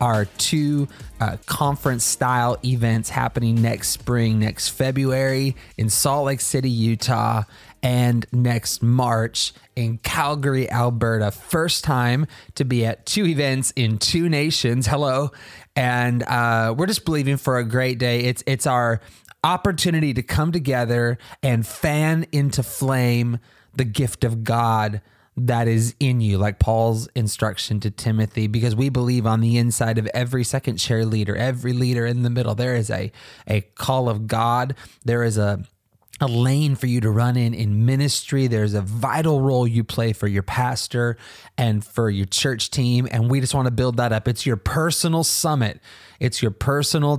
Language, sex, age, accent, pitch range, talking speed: English, male, 20-39, American, 110-130 Hz, 165 wpm